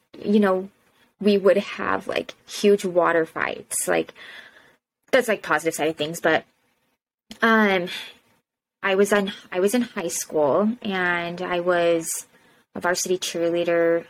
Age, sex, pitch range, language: 20-39, female, 165-200 Hz, English